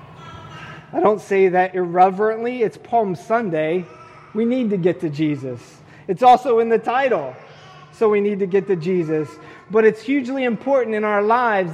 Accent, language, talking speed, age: American, English, 170 wpm, 30-49